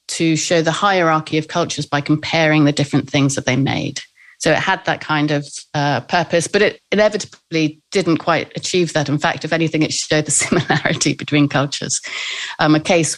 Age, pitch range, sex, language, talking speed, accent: 40-59, 150-190 Hz, female, English, 190 wpm, British